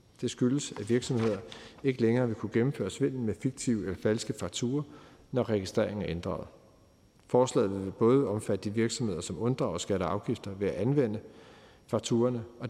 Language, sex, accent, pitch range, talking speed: Danish, male, native, 105-130 Hz, 155 wpm